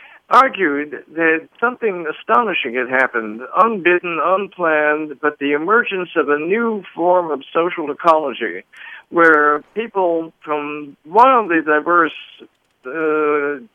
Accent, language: American, English